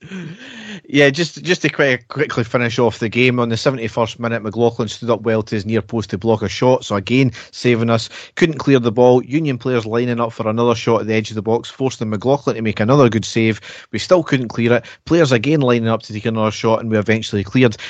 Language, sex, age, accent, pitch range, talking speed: English, male, 30-49, British, 110-130 Hz, 235 wpm